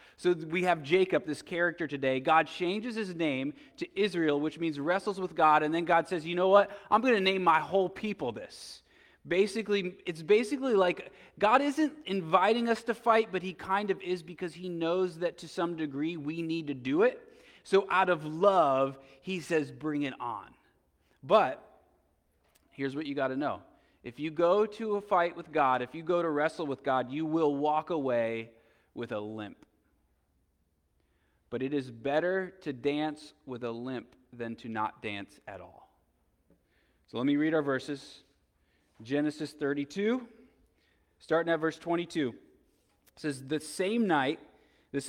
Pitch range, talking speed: 140-185 Hz, 175 wpm